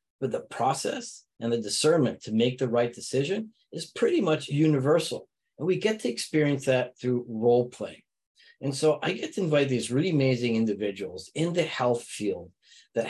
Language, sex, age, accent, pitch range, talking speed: English, male, 40-59, American, 120-150 Hz, 175 wpm